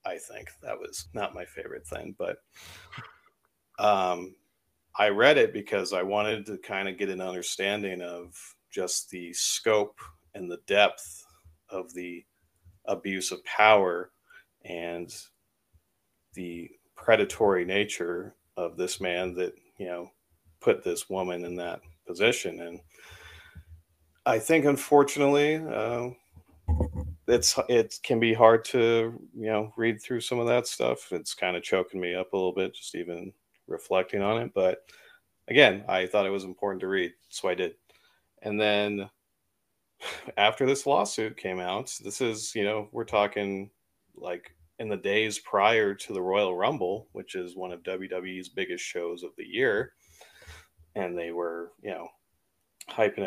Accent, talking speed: American, 150 wpm